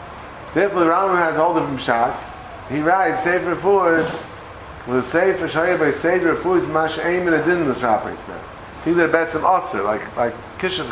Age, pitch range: 30-49, 110-165 Hz